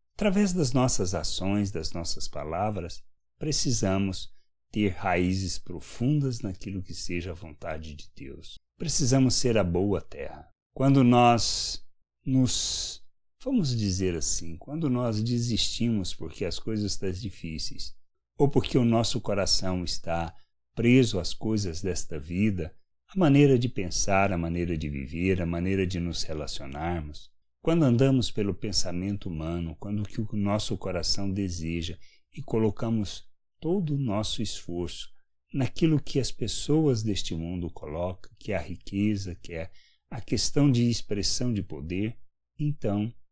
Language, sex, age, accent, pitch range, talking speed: Portuguese, male, 60-79, Brazilian, 85-120 Hz, 135 wpm